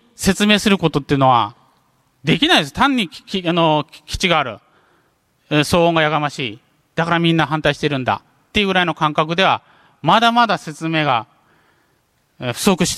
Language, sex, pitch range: Japanese, male, 140-200 Hz